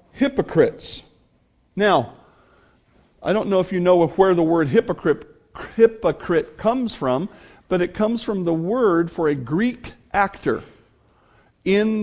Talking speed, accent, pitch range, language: 135 wpm, American, 165-205 Hz, English